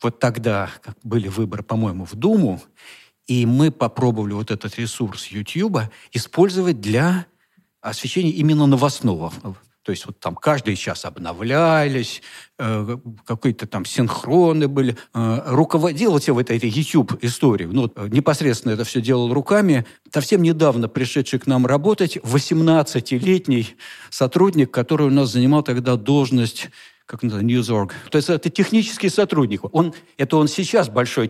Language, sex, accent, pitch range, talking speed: Russian, male, native, 115-150 Hz, 130 wpm